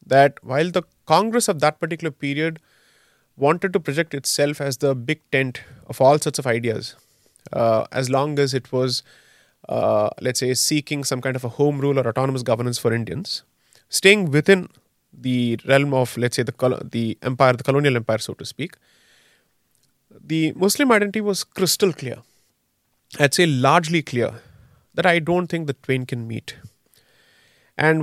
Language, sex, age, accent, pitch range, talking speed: English, male, 30-49, Indian, 130-180 Hz, 165 wpm